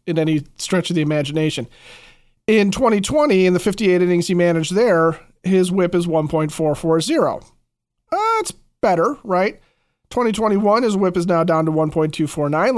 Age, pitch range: 30-49, 155-185 Hz